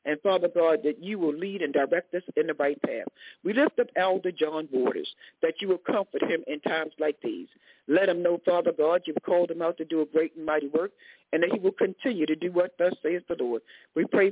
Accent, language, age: American, English, 50-69